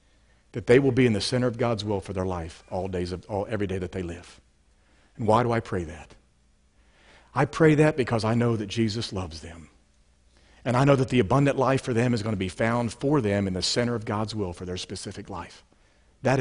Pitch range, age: 85-130 Hz, 50-69